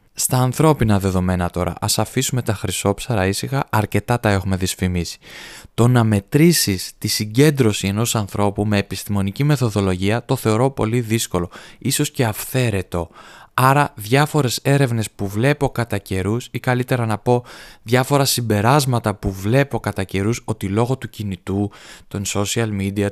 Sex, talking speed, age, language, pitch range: male, 140 wpm, 20-39, Greek, 100-120 Hz